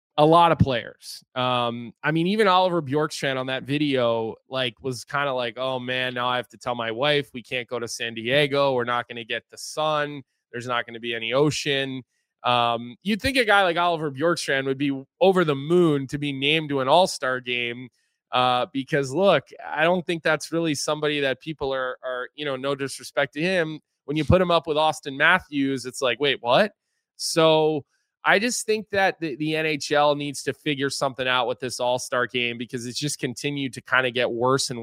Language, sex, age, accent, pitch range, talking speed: English, male, 20-39, American, 125-150 Hz, 215 wpm